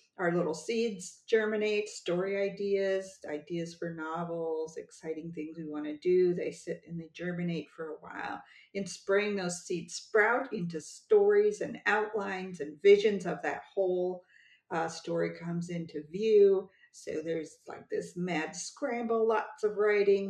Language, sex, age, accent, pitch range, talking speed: English, female, 50-69, American, 165-200 Hz, 150 wpm